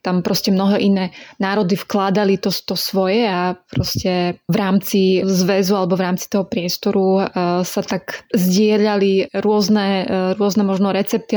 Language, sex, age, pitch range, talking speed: English, female, 20-39, 190-210 Hz, 135 wpm